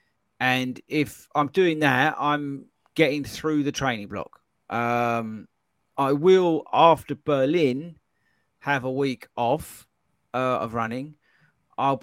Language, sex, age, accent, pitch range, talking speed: English, male, 40-59, British, 125-180 Hz, 120 wpm